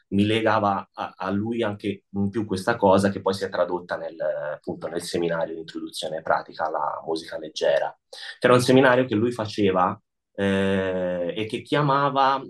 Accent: native